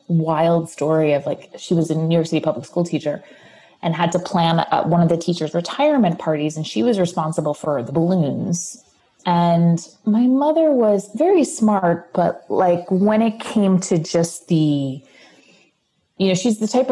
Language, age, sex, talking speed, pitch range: English, 30-49, female, 175 wpm, 165-210 Hz